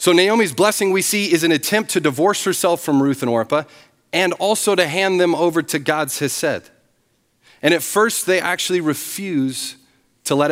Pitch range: 140-210 Hz